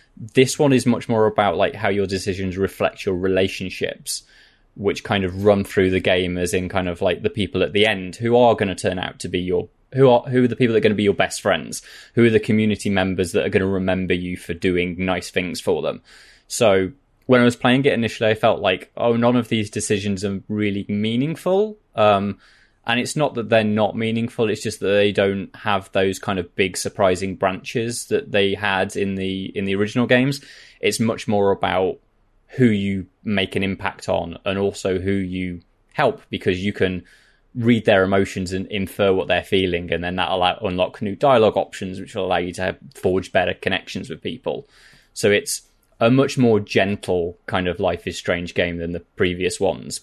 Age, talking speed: 20-39, 210 wpm